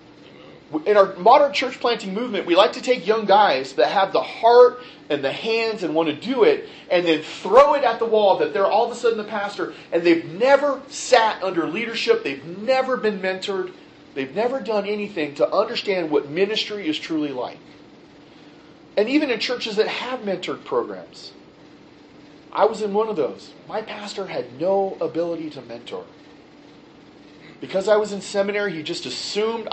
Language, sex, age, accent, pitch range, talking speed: English, male, 40-59, American, 165-250 Hz, 180 wpm